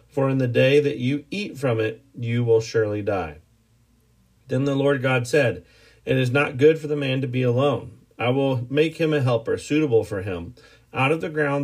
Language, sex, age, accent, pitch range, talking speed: English, male, 40-59, American, 115-145 Hz, 210 wpm